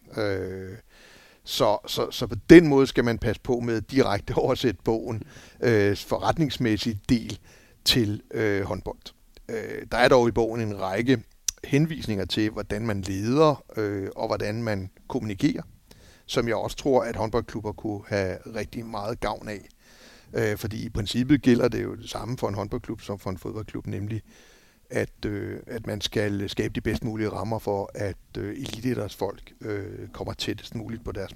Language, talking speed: Danish, 165 wpm